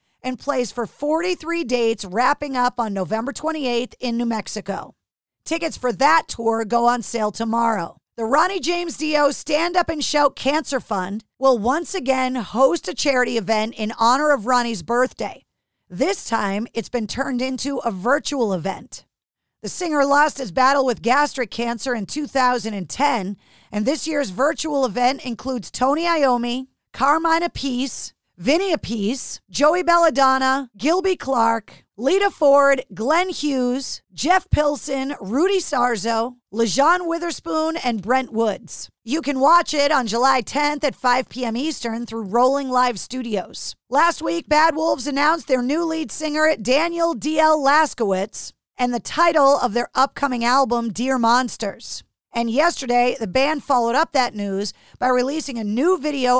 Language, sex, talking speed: English, female, 150 wpm